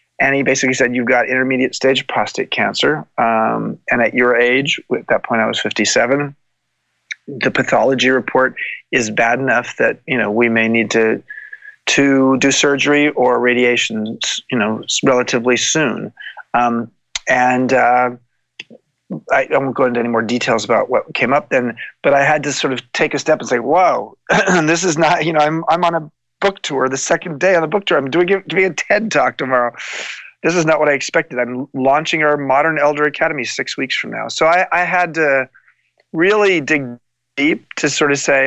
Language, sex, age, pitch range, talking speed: English, male, 30-49, 125-160 Hz, 195 wpm